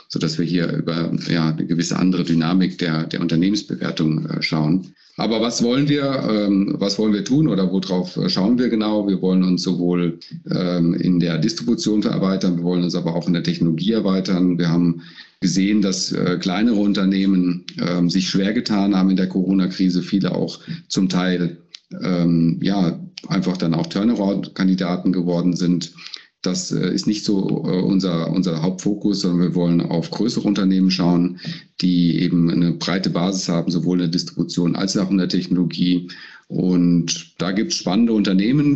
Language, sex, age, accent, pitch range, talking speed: German, male, 40-59, German, 85-95 Hz, 165 wpm